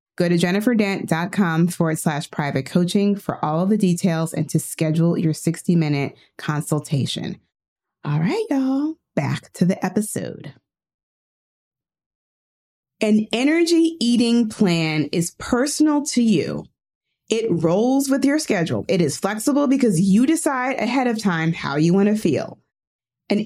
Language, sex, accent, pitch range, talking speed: English, female, American, 170-240 Hz, 135 wpm